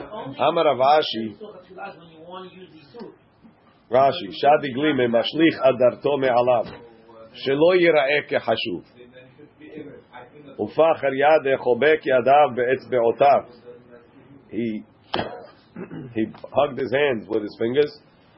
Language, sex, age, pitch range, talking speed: English, male, 40-59, 115-145 Hz, 80 wpm